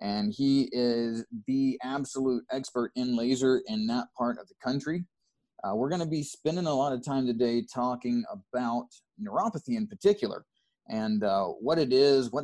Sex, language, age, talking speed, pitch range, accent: male, English, 30-49, 170 wpm, 110-155 Hz, American